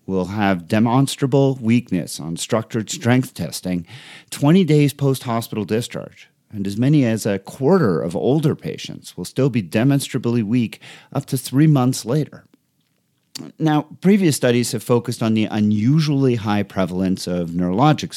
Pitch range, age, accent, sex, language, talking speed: 100-140 Hz, 50-69, American, male, English, 140 wpm